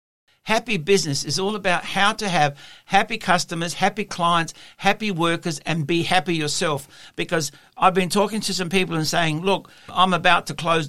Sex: male